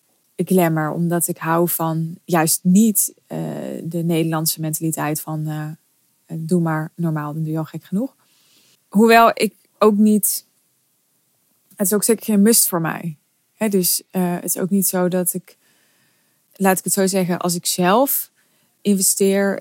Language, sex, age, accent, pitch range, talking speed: Dutch, female, 20-39, Dutch, 165-190 Hz, 160 wpm